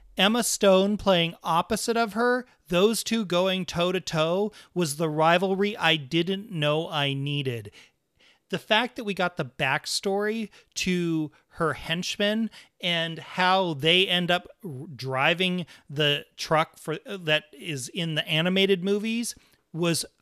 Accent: American